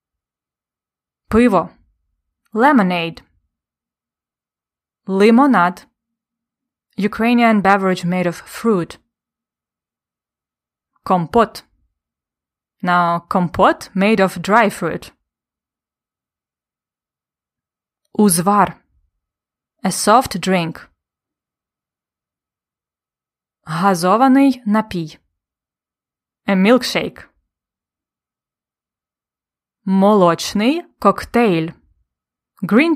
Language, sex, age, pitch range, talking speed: English, female, 20-39, 165-215 Hz, 45 wpm